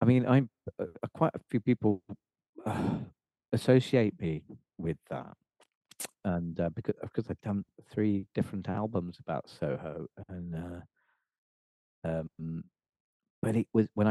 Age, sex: 40-59, male